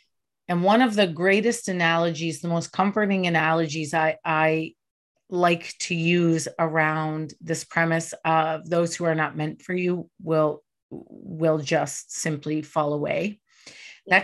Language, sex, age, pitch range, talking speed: English, female, 30-49, 160-205 Hz, 140 wpm